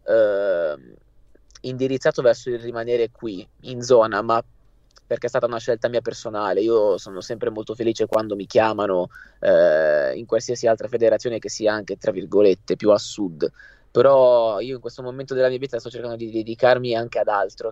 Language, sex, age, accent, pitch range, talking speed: Italian, male, 20-39, native, 110-150 Hz, 170 wpm